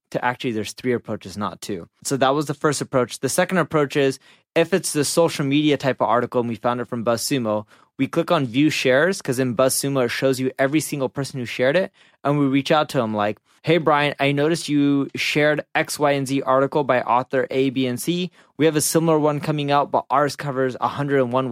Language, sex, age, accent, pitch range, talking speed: English, male, 20-39, American, 125-155 Hz, 230 wpm